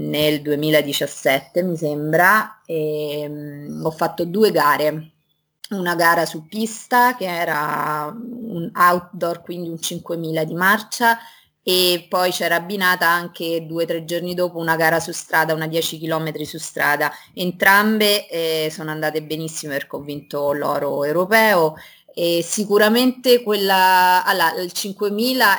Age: 20-39